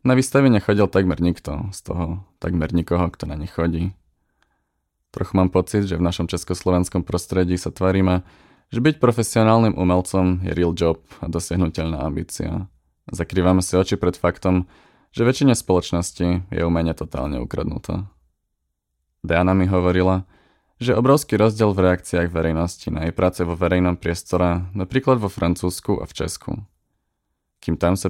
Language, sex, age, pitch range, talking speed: Czech, male, 20-39, 85-95 Hz, 145 wpm